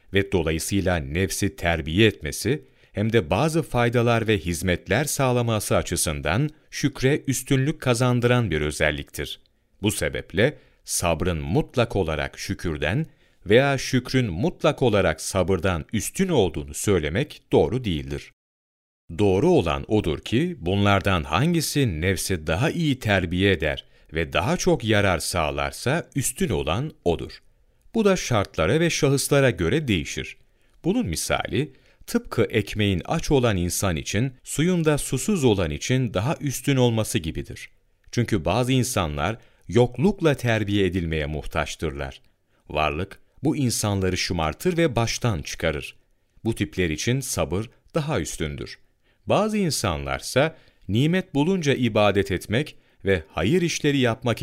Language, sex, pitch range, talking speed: Turkish, male, 90-140 Hz, 115 wpm